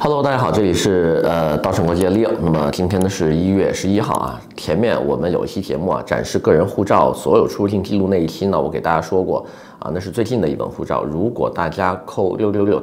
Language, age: Chinese, 30-49